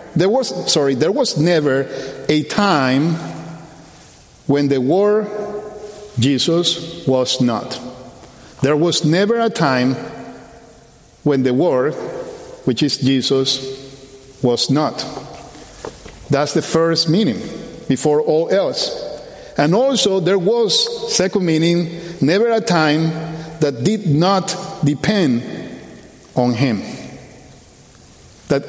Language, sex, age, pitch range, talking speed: English, male, 50-69, 135-190 Hz, 105 wpm